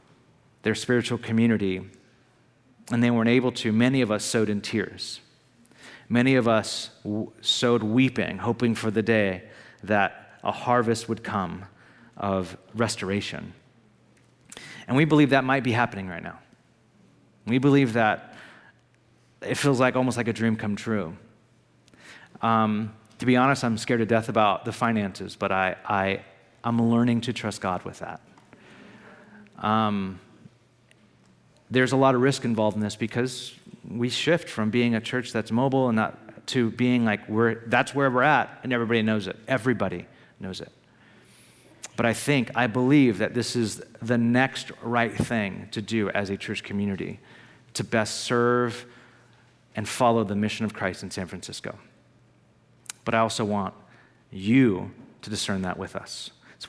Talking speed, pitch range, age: 155 wpm, 105-125 Hz, 40-59